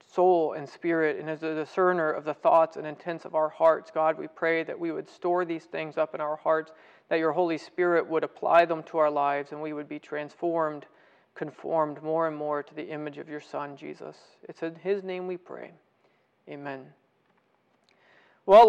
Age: 40-59